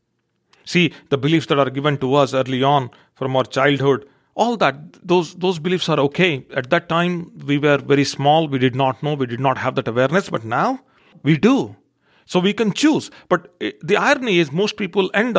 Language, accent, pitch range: English, Indian, 135-180 Hz